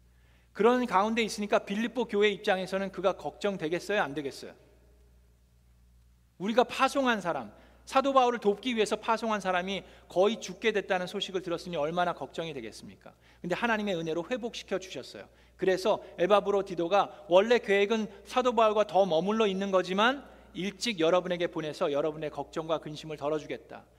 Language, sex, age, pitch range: Korean, male, 40-59, 135-210 Hz